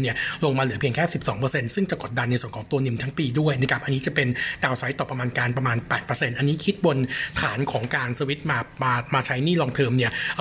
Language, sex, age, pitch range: Thai, male, 60-79, 130-155 Hz